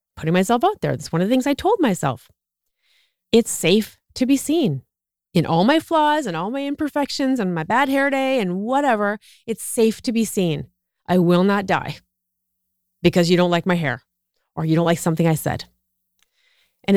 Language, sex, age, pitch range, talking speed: English, female, 30-49, 170-220 Hz, 195 wpm